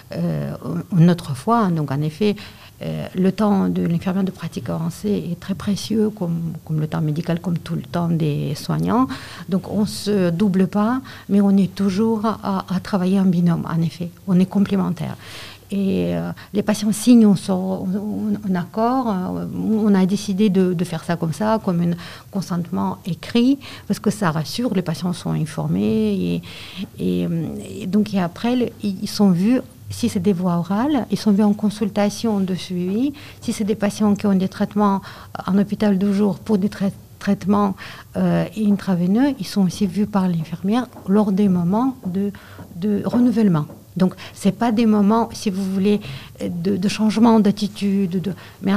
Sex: female